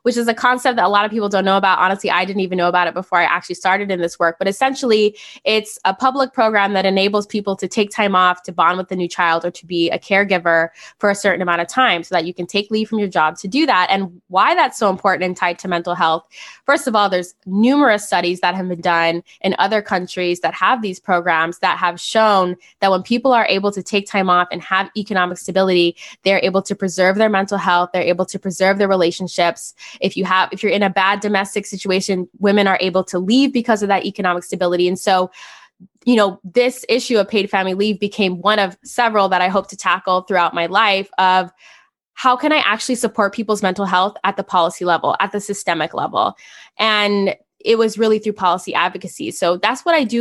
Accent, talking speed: American, 235 wpm